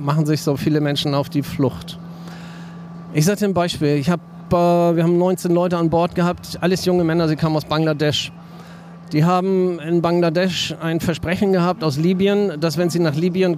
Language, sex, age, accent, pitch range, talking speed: German, male, 40-59, German, 155-180 Hz, 185 wpm